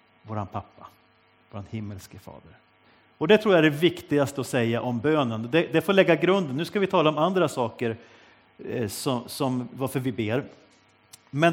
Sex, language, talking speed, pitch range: male, Swedish, 175 wpm, 110-155 Hz